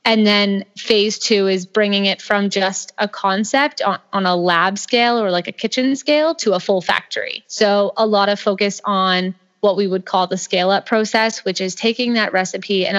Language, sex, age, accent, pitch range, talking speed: English, female, 20-39, American, 190-220 Hz, 205 wpm